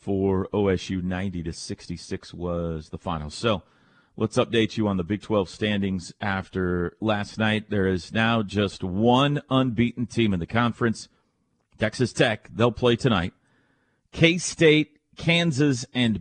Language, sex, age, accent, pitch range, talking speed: English, male, 40-59, American, 100-130 Hz, 135 wpm